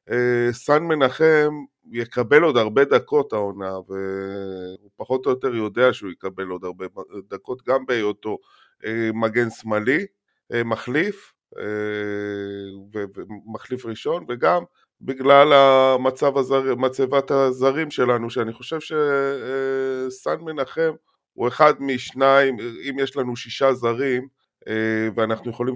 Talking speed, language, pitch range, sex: 100 wpm, Hebrew, 110-135 Hz, male